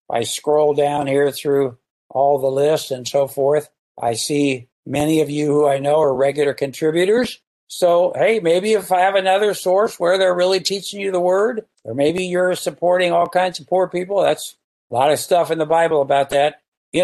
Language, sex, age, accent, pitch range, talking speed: English, male, 60-79, American, 135-170 Hz, 200 wpm